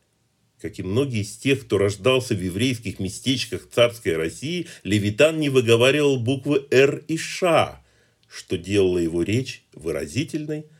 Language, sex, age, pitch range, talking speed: Russian, male, 40-59, 100-135 Hz, 135 wpm